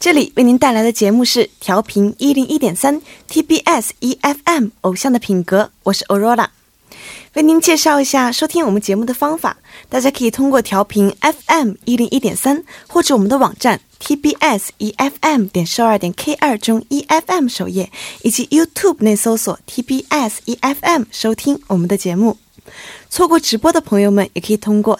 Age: 20-39